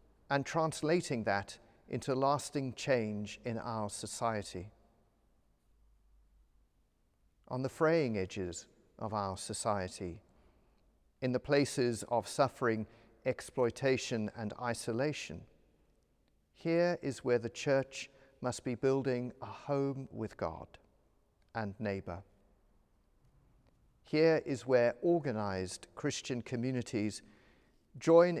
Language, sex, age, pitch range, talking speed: English, male, 40-59, 105-135 Hz, 95 wpm